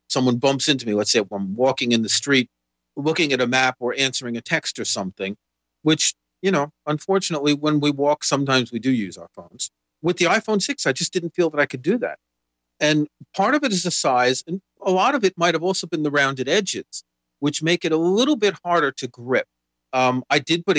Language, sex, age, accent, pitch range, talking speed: English, male, 40-59, American, 115-170 Hz, 230 wpm